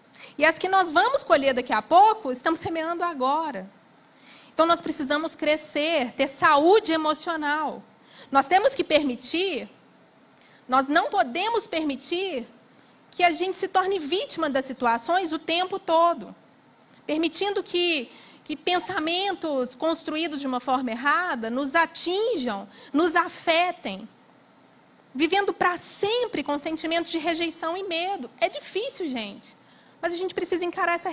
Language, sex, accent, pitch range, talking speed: Portuguese, female, Brazilian, 275-345 Hz, 135 wpm